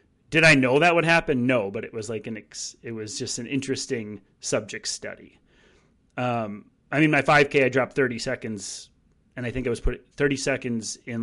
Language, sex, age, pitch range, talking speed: English, male, 30-49, 105-140 Hz, 205 wpm